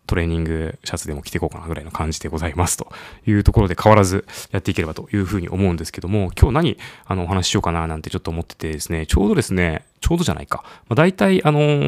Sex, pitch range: male, 85-120 Hz